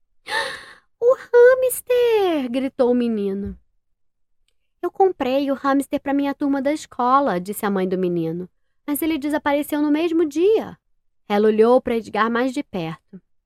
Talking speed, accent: 145 wpm, Brazilian